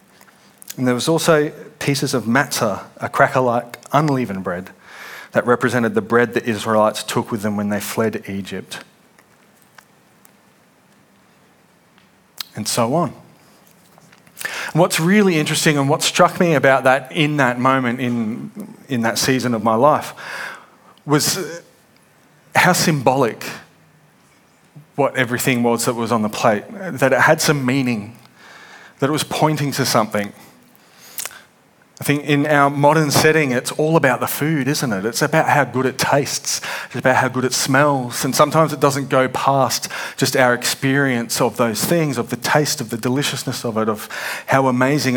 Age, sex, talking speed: 30-49, male, 155 wpm